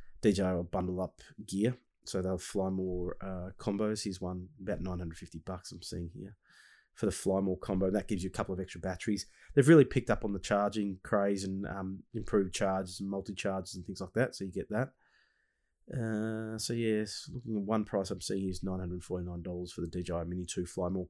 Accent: Australian